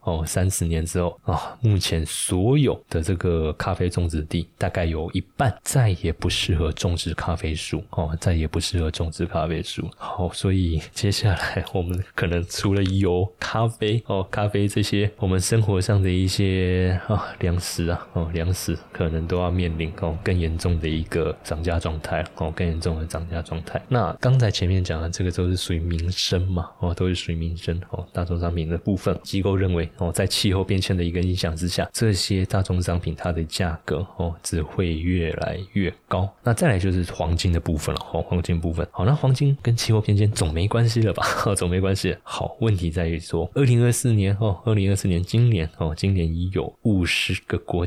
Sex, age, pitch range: male, 20-39, 85-100 Hz